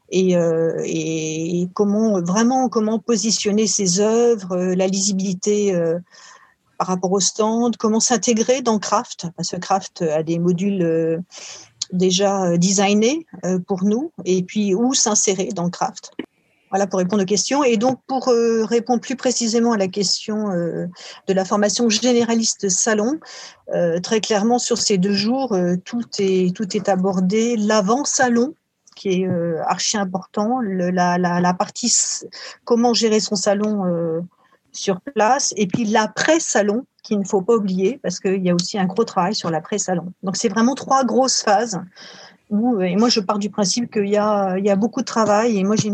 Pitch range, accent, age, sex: 185-230 Hz, French, 50-69, female